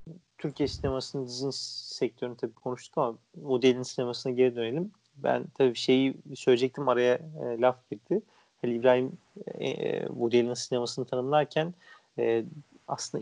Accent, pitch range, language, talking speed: native, 120-140 Hz, Turkish, 125 wpm